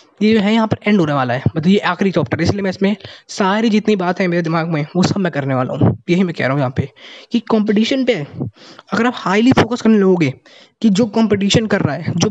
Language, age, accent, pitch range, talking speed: Hindi, 20-39, native, 155-215 Hz, 255 wpm